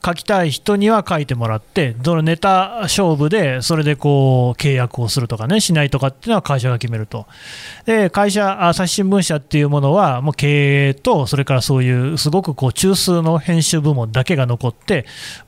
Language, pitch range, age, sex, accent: Japanese, 130-185 Hz, 30-49, male, native